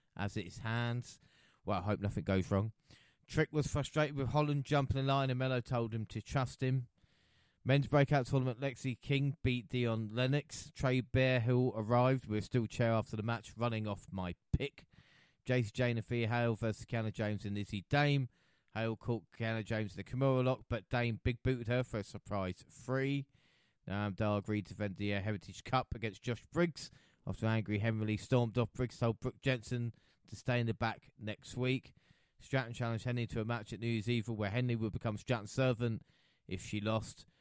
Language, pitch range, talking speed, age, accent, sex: English, 110-130 Hz, 190 wpm, 30-49, British, male